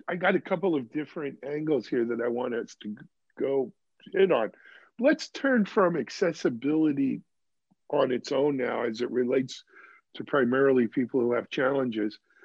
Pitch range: 135-200 Hz